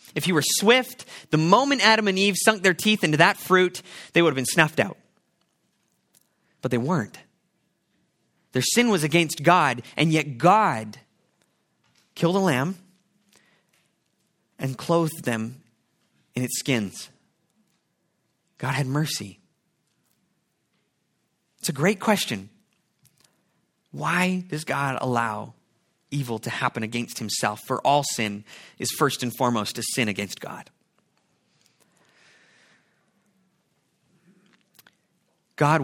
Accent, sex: American, male